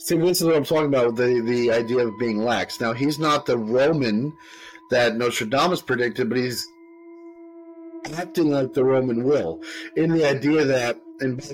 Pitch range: 125-175 Hz